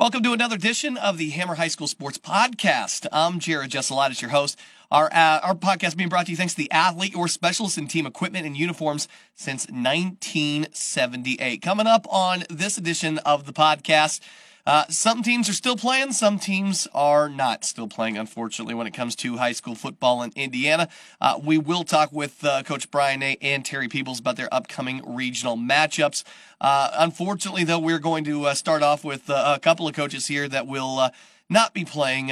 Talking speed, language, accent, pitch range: 195 wpm, English, American, 135-165 Hz